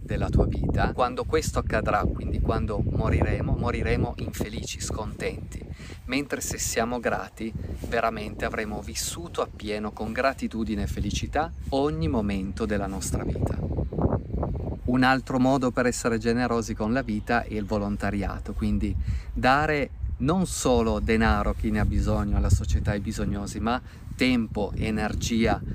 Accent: native